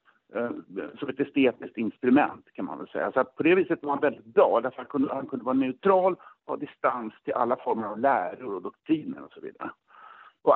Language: Swedish